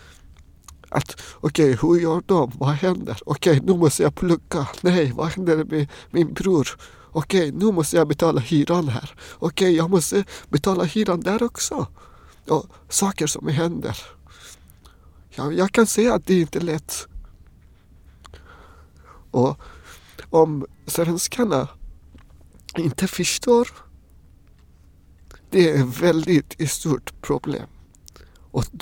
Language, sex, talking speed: Swedish, male, 125 wpm